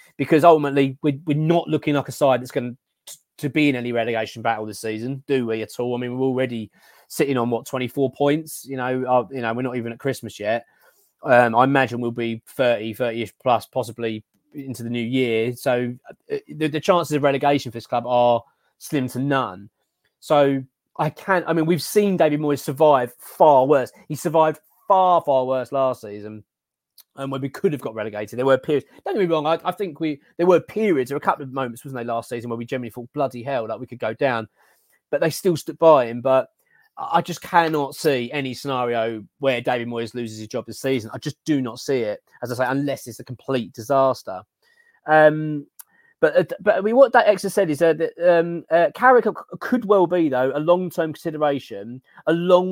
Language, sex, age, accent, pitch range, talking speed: English, male, 20-39, British, 120-160 Hz, 215 wpm